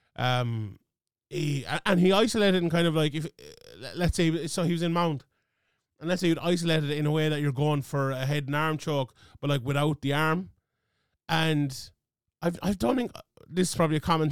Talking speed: 210 wpm